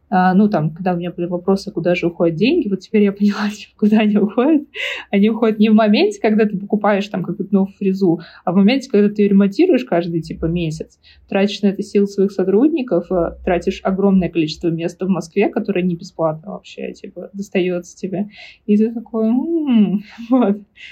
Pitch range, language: 185-220 Hz, Russian